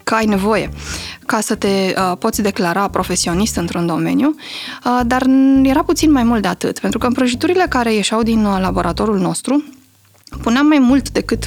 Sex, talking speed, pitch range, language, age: female, 155 wpm, 200-255 Hz, Romanian, 20-39